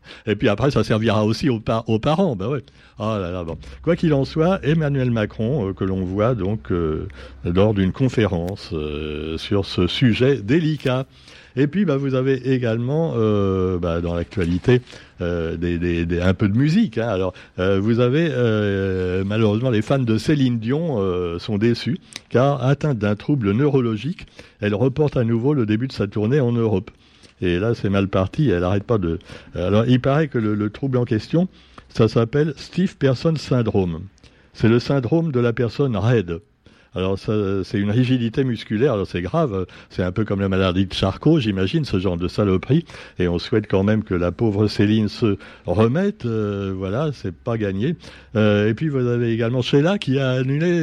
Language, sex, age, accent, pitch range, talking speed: French, male, 60-79, French, 95-130 Hz, 190 wpm